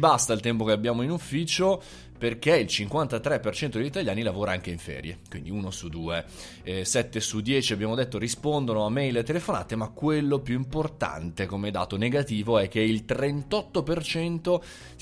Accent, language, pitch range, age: native, Italian, 110-145 Hz, 20-39